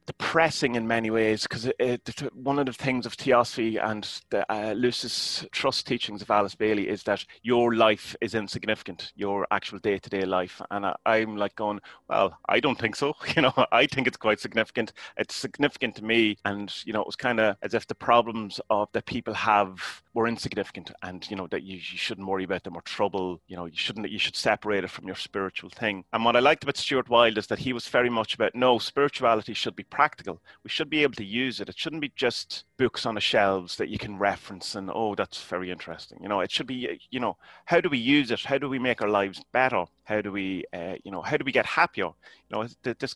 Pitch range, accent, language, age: 100-125 Hz, British, Portuguese, 30-49